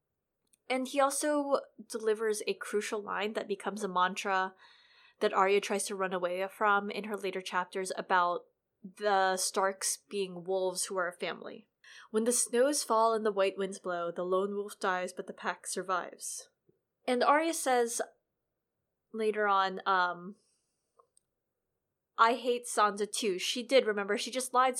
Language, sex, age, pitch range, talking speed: English, female, 20-39, 195-255 Hz, 155 wpm